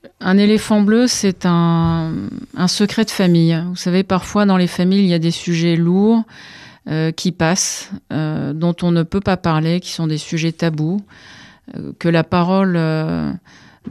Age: 40-59